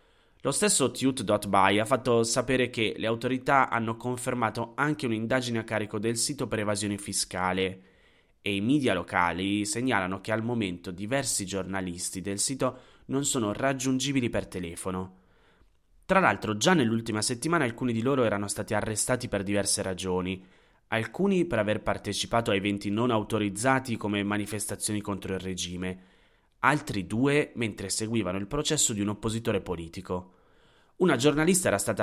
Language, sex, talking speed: Italian, male, 145 wpm